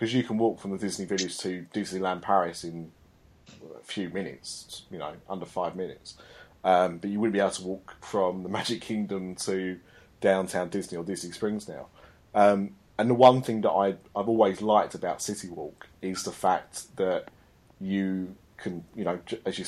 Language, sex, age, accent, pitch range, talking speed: English, male, 30-49, British, 90-110 Hz, 190 wpm